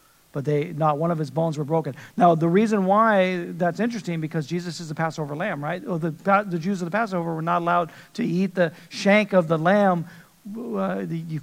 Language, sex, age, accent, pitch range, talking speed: English, male, 50-69, American, 135-170 Hz, 215 wpm